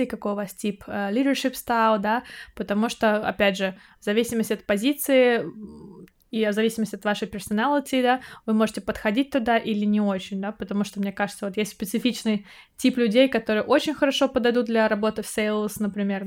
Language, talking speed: Russian, 180 wpm